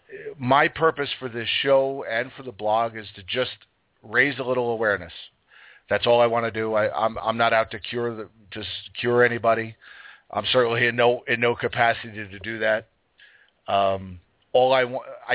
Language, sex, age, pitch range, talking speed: English, male, 40-59, 100-120 Hz, 185 wpm